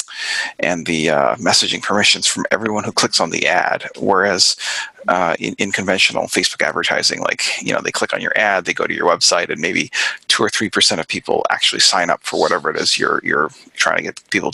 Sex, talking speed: male, 215 wpm